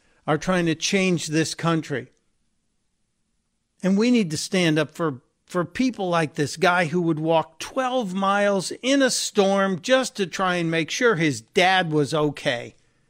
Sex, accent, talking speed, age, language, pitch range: male, American, 165 wpm, 50-69, English, 155-195 Hz